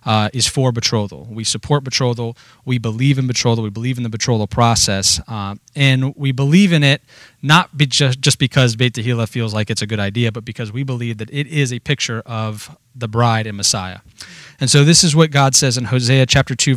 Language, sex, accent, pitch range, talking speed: English, male, American, 115-140 Hz, 220 wpm